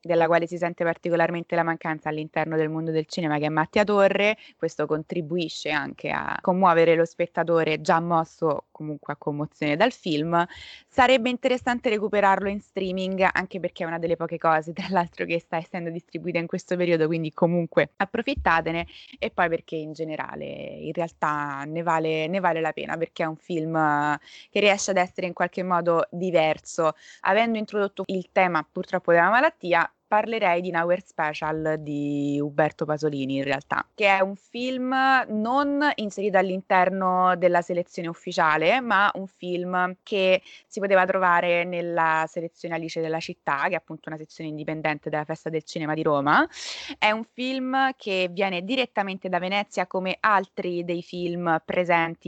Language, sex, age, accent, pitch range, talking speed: Italian, female, 20-39, native, 160-195 Hz, 160 wpm